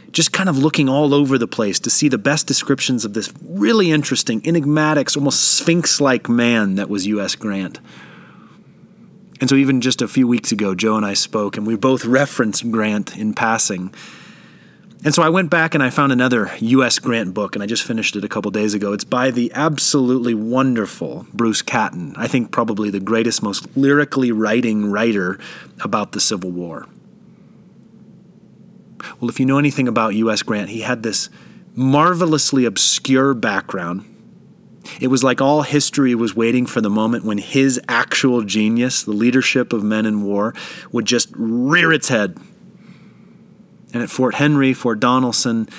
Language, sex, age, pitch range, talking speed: English, male, 30-49, 110-145 Hz, 170 wpm